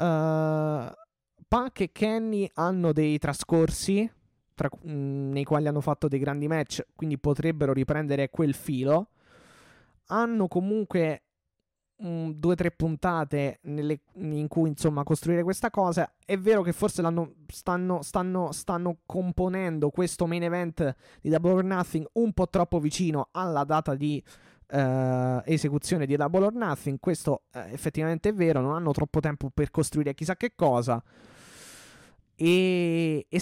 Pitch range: 145-175 Hz